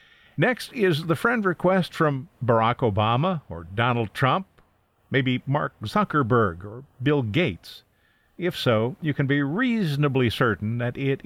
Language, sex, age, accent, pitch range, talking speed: English, male, 50-69, American, 105-150 Hz, 140 wpm